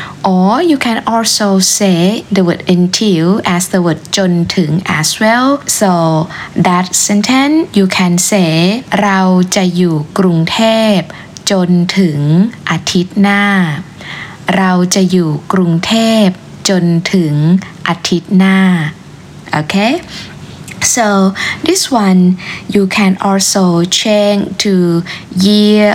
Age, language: 20-39, Thai